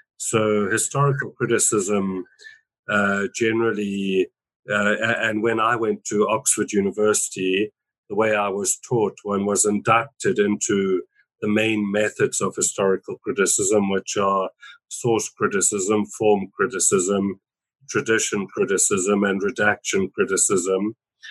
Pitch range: 100-115 Hz